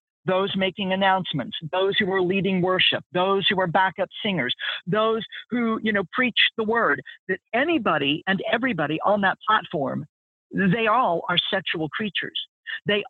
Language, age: English, 50-69